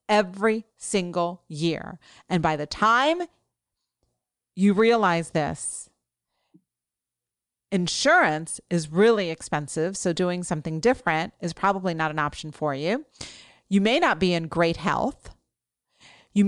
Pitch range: 165-210 Hz